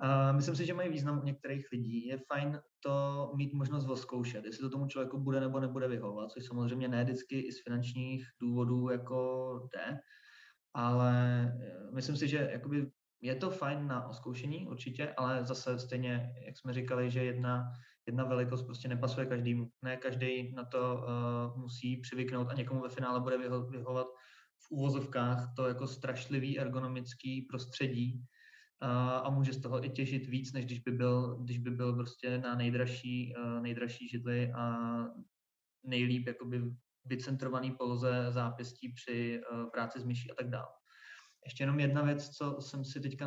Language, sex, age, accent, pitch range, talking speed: Czech, male, 20-39, native, 125-135 Hz, 160 wpm